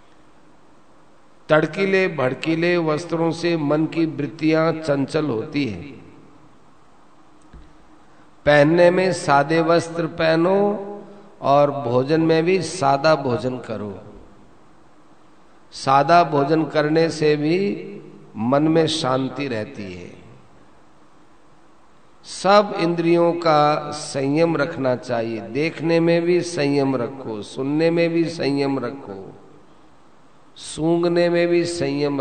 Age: 50-69